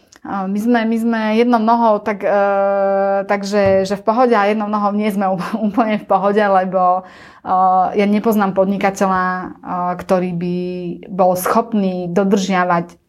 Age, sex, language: 30-49, female, Slovak